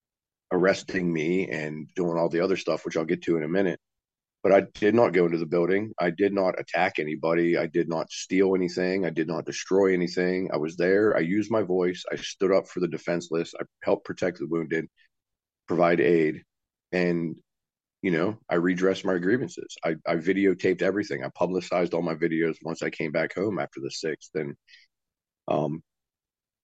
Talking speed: 185 wpm